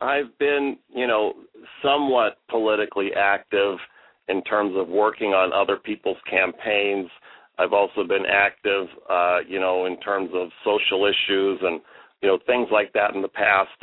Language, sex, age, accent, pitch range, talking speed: English, male, 40-59, American, 95-110 Hz, 155 wpm